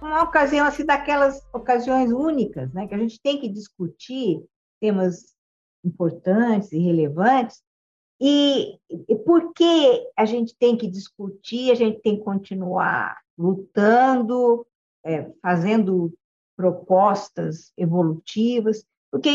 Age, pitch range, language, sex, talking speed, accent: 50-69, 190-270 Hz, Portuguese, female, 110 wpm, Brazilian